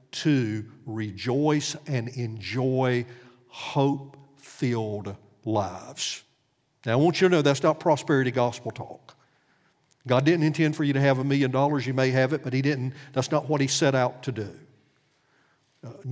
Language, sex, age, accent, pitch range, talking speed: English, male, 50-69, American, 120-150 Hz, 160 wpm